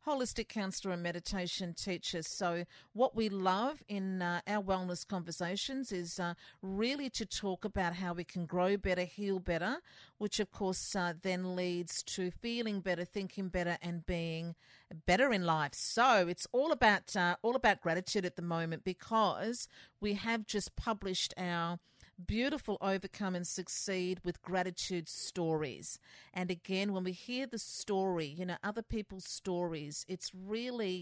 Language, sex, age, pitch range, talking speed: English, female, 50-69, 175-210 Hz, 160 wpm